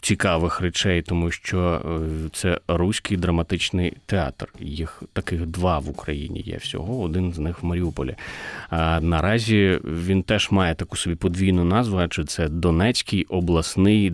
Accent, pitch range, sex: native, 85-100 Hz, male